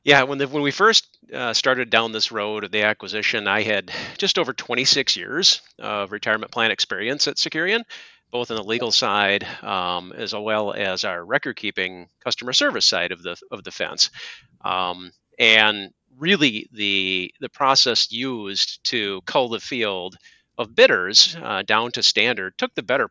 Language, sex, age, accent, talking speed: English, male, 40-59, American, 170 wpm